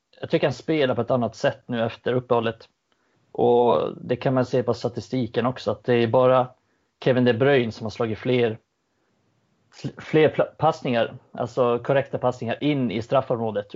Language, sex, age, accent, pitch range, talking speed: Swedish, male, 30-49, native, 115-130 Hz, 165 wpm